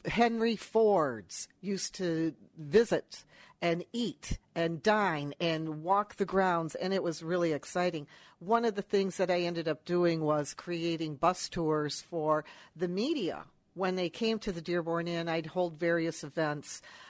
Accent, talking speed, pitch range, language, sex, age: American, 160 wpm, 165-195 Hz, English, female, 60-79